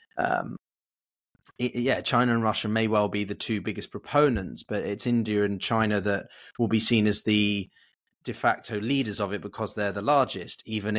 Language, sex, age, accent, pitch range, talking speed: English, male, 20-39, British, 100-120 Hz, 180 wpm